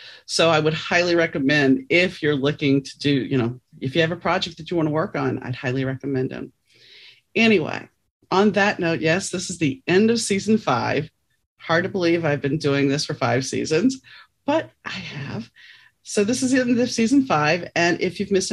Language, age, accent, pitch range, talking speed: English, 40-59, American, 130-185 Hz, 205 wpm